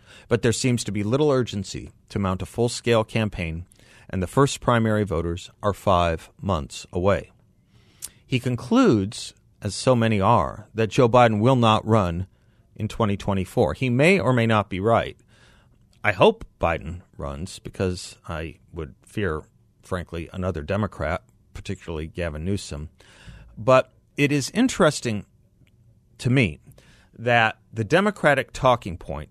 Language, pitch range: English, 95-125 Hz